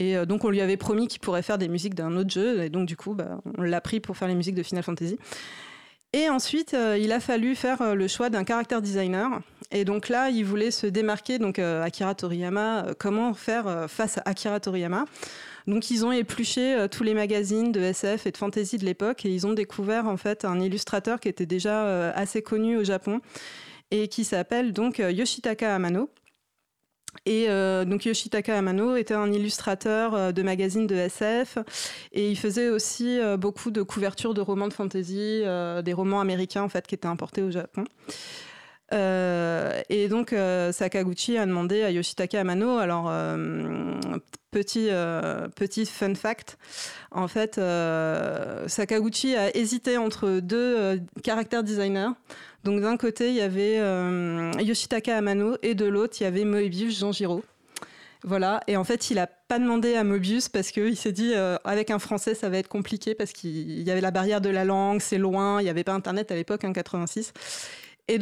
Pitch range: 190-225 Hz